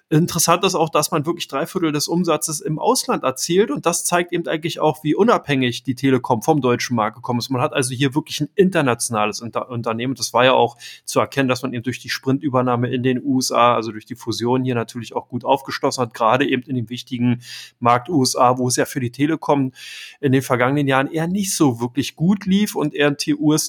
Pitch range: 125-150 Hz